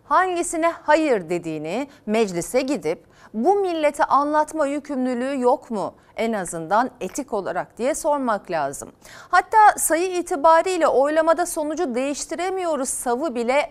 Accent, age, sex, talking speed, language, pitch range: native, 40-59, female, 115 wpm, Turkish, 225-310 Hz